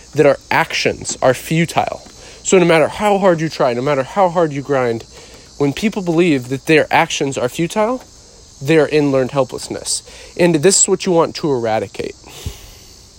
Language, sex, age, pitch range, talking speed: English, male, 40-59, 120-155 Hz, 180 wpm